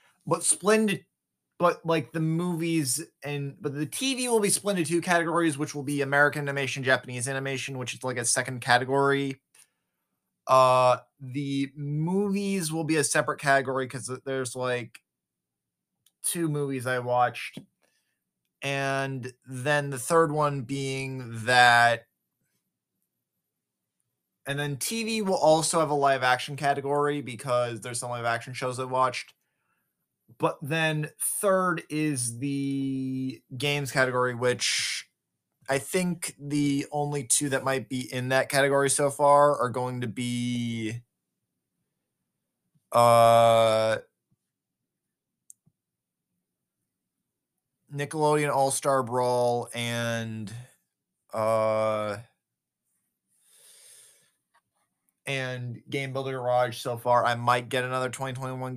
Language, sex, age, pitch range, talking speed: English, male, 20-39, 125-145 Hz, 110 wpm